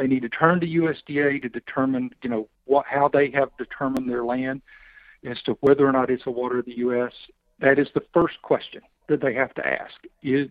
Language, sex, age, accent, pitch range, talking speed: English, male, 50-69, American, 125-155 Hz, 225 wpm